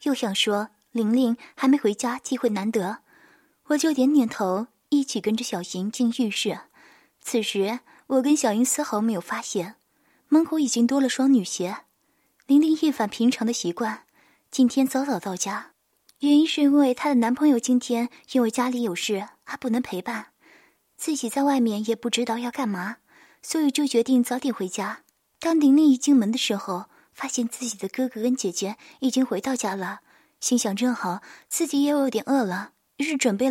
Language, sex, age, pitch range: Chinese, female, 20-39, 225-290 Hz